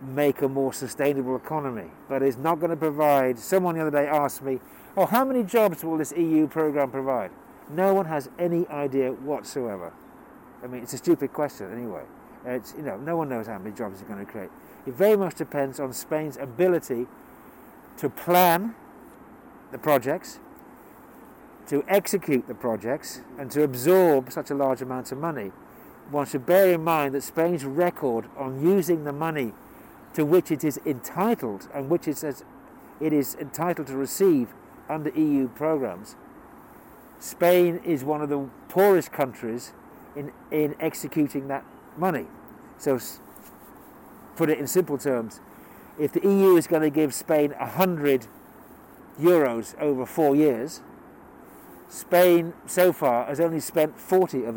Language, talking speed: English, 160 wpm